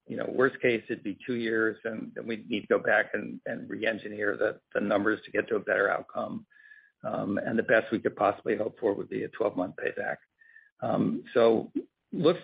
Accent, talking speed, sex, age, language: American, 210 wpm, male, 50-69, English